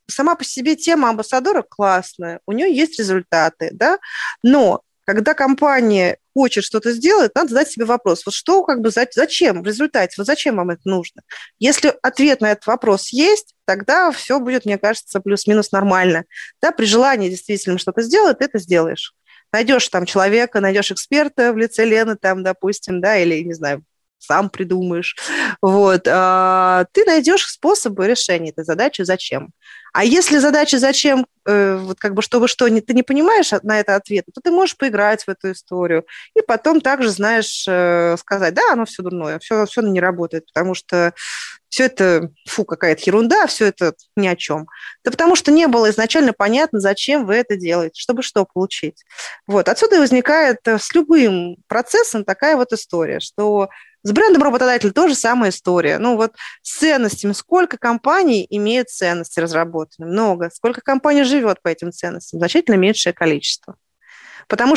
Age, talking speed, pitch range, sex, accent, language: 30-49, 165 wpm, 185-275 Hz, female, native, Russian